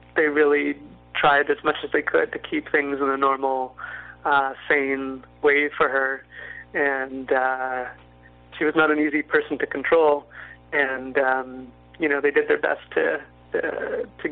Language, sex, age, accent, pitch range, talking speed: English, male, 30-49, American, 135-150 Hz, 170 wpm